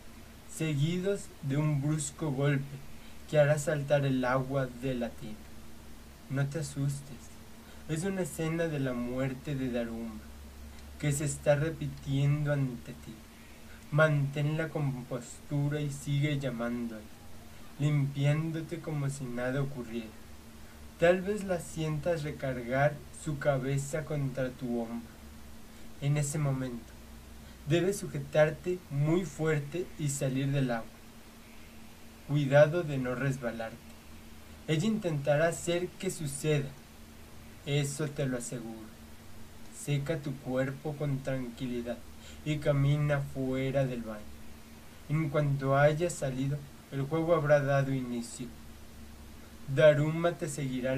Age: 20-39